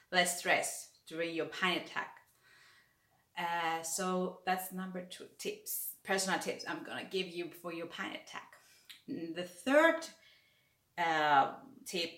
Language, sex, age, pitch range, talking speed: English, female, 30-49, 175-200 Hz, 135 wpm